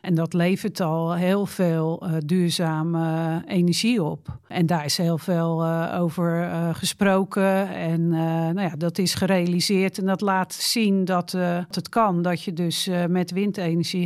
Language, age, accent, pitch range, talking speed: Dutch, 50-69, Dutch, 165-195 Hz, 165 wpm